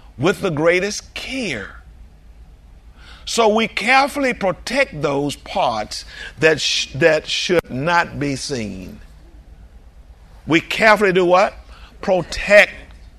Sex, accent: male, American